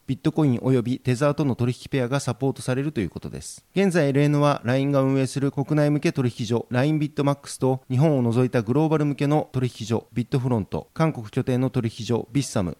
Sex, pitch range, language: male, 120-145 Hz, Japanese